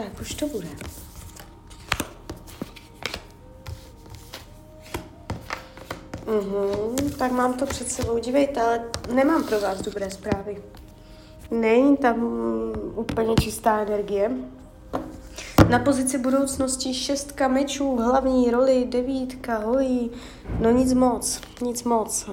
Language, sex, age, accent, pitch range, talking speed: Czech, female, 30-49, native, 195-250 Hz, 95 wpm